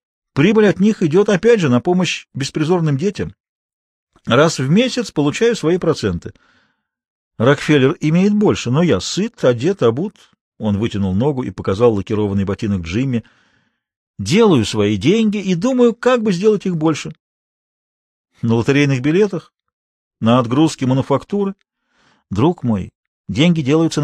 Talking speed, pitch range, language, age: 130 wpm, 115-195 Hz, Russian, 40-59